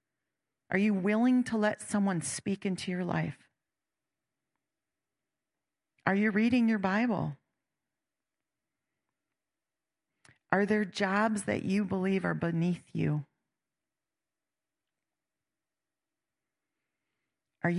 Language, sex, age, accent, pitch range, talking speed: English, female, 40-59, American, 160-200 Hz, 85 wpm